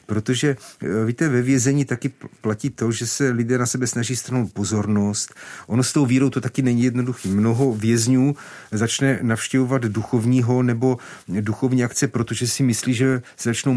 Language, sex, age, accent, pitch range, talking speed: Czech, male, 40-59, native, 115-135 Hz, 160 wpm